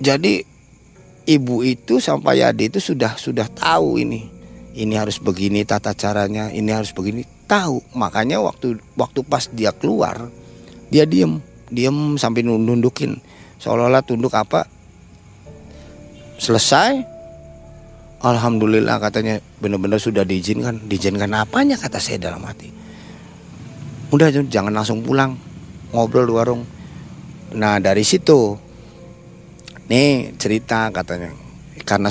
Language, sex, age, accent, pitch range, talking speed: Indonesian, male, 30-49, native, 100-130 Hz, 110 wpm